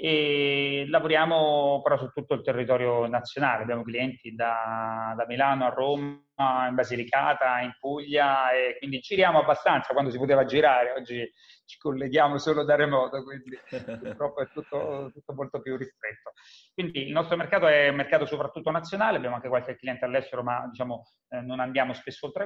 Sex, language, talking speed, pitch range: male, Italian, 165 wpm, 125-155 Hz